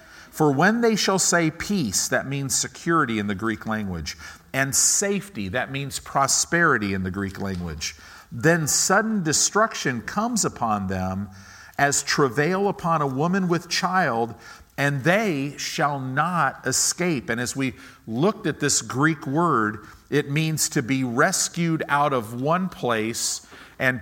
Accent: American